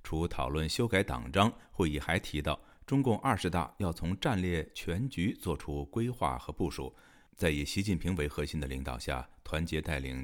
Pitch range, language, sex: 70-95 Hz, Chinese, male